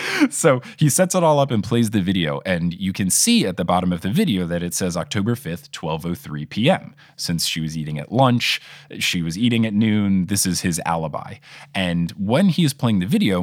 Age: 20-39